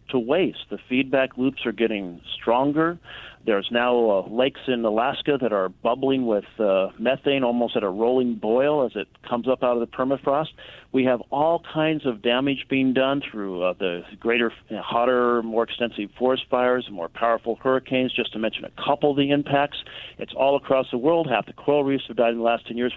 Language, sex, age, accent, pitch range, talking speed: English, male, 50-69, American, 115-140 Hz, 200 wpm